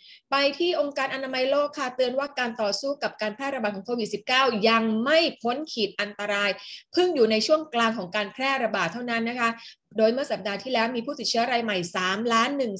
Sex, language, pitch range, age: female, Thai, 210-265 Hz, 20-39